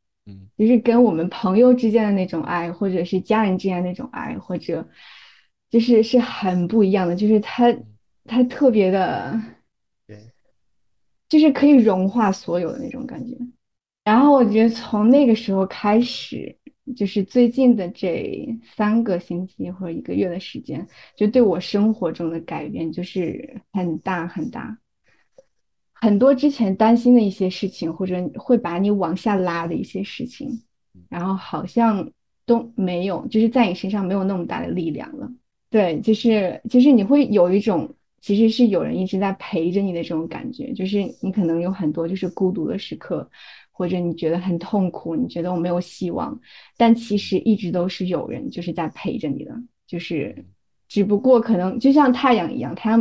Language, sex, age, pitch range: Chinese, female, 20-39, 180-240 Hz